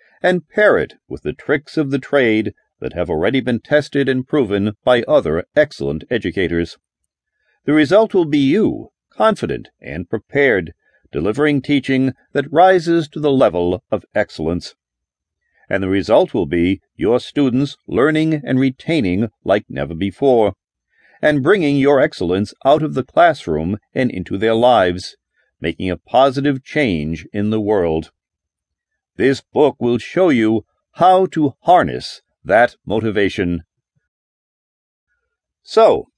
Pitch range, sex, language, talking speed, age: 95-150 Hz, male, English, 135 wpm, 50-69